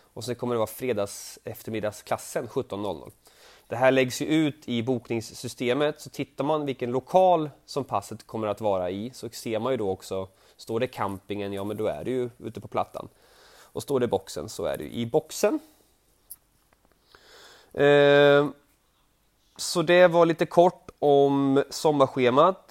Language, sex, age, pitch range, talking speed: Swedish, male, 30-49, 115-150 Hz, 165 wpm